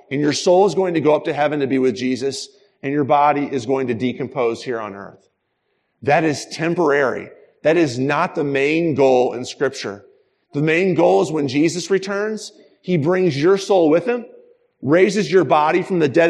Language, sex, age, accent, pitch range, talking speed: English, male, 40-59, American, 150-195 Hz, 200 wpm